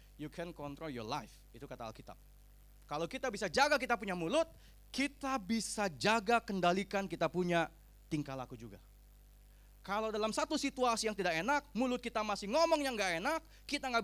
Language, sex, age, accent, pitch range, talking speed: Indonesian, male, 20-39, native, 145-235 Hz, 170 wpm